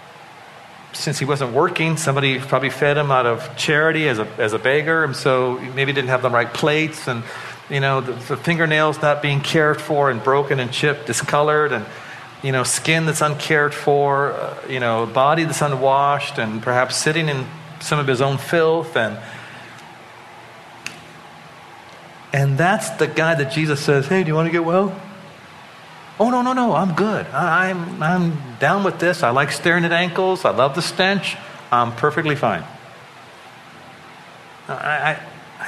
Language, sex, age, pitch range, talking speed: English, male, 40-59, 135-170 Hz, 175 wpm